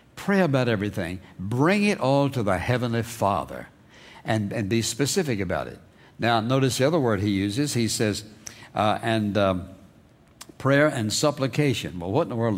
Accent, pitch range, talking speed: American, 100-135 Hz, 170 wpm